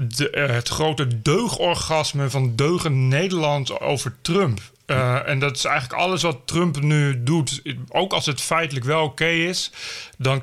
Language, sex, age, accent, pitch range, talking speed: Dutch, male, 30-49, Belgian, 135-165 Hz, 165 wpm